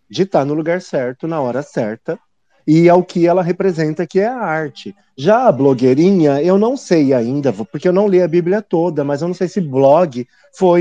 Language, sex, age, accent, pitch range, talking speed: Portuguese, male, 30-49, Brazilian, 130-180 Hz, 210 wpm